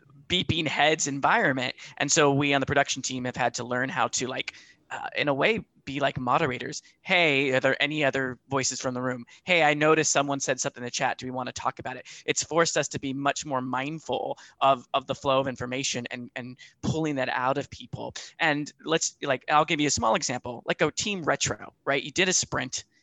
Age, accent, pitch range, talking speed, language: 20-39, American, 130-155 Hz, 230 wpm, English